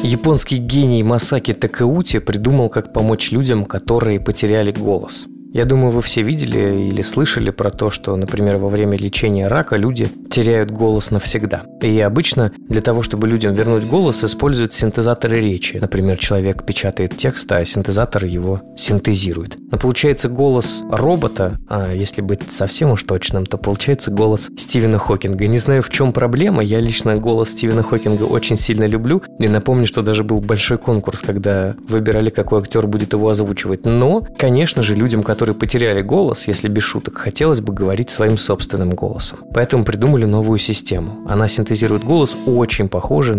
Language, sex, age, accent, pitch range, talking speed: Russian, male, 20-39, native, 100-120 Hz, 160 wpm